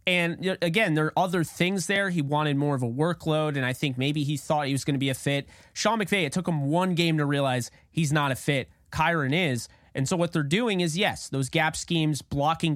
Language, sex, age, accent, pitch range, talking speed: English, male, 20-39, American, 140-170 Hz, 245 wpm